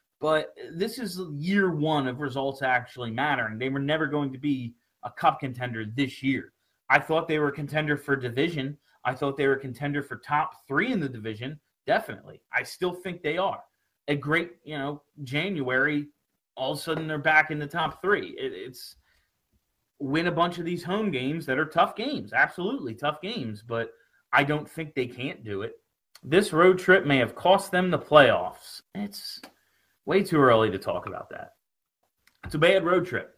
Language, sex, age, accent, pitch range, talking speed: English, male, 30-49, American, 135-170 Hz, 190 wpm